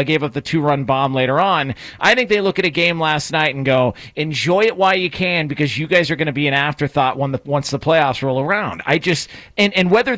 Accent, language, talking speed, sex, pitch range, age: American, English, 265 wpm, male, 155-210 Hz, 40-59